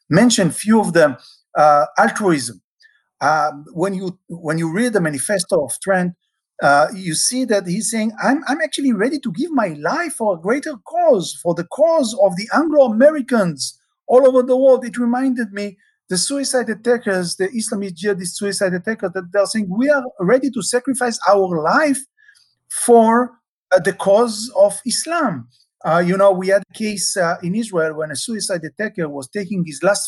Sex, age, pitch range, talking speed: male, 50-69, 180-250 Hz, 180 wpm